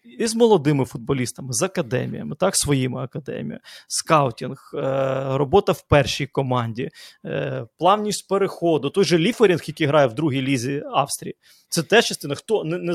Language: Ukrainian